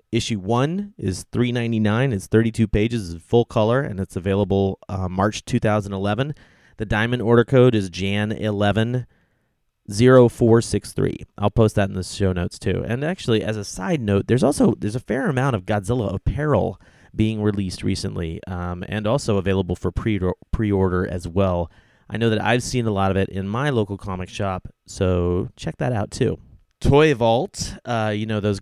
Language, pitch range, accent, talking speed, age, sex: English, 95-115 Hz, American, 195 wpm, 30-49, male